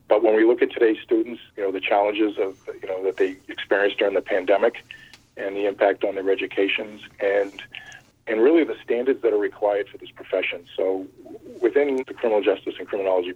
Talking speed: 200 wpm